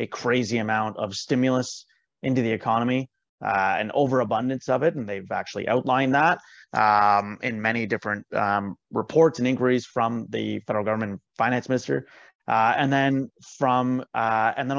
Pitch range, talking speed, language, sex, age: 110-135 Hz, 160 wpm, English, male, 30-49